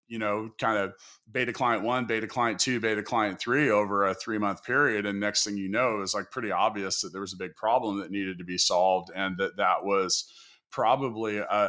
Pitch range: 95-115 Hz